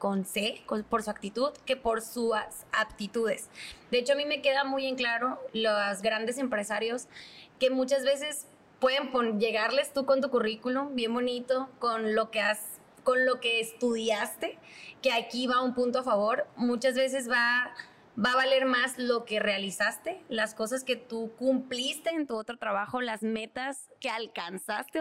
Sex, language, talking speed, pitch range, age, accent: female, Spanish, 175 wpm, 225-270 Hz, 20-39, Mexican